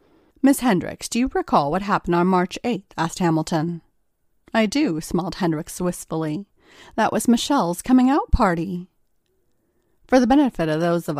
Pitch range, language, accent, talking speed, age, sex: 170-235 Hz, English, American, 150 wpm, 40-59, female